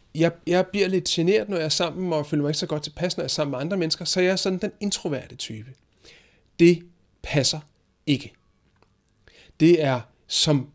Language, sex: Danish, male